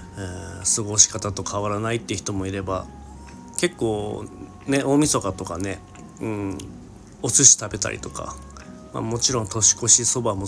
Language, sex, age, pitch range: Japanese, male, 40-59, 95-120 Hz